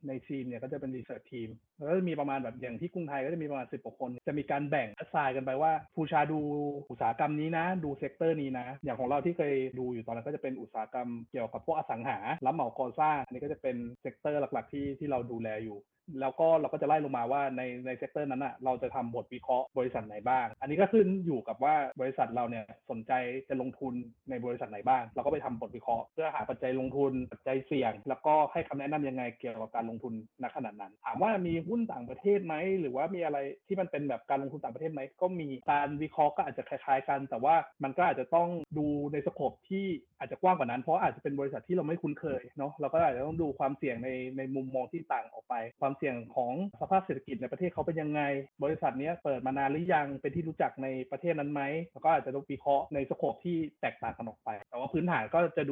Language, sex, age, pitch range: Thai, male, 20-39, 130-155 Hz